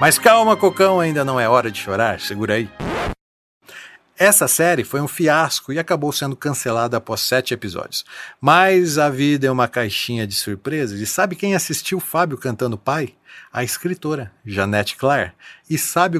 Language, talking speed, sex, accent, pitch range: Portuguese, 165 wpm, male, Brazilian, 110-160 Hz